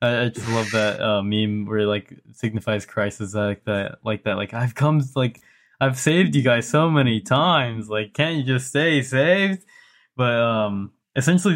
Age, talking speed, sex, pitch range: 10-29, 180 wpm, male, 110-135 Hz